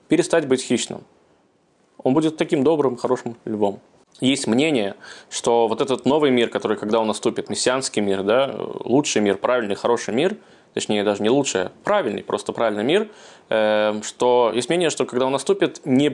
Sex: male